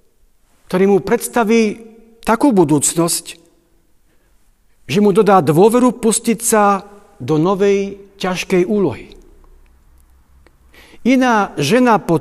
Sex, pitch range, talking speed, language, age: male, 160-220 Hz, 90 wpm, Slovak, 50-69